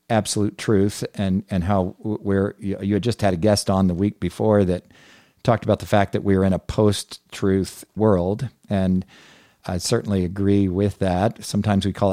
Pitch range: 95-115 Hz